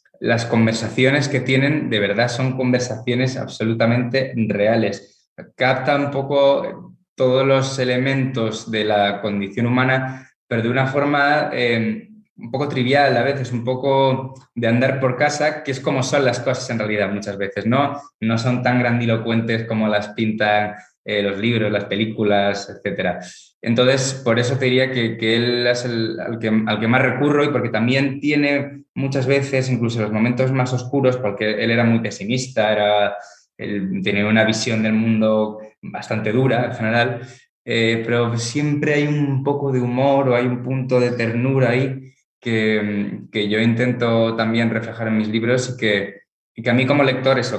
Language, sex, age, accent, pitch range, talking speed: Spanish, male, 20-39, Spanish, 110-130 Hz, 170 wpm